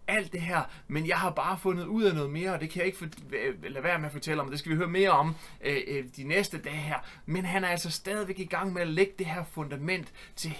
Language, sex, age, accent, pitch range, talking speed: Danish, male, 30-49, native, 160-200 Hz, 265 wpm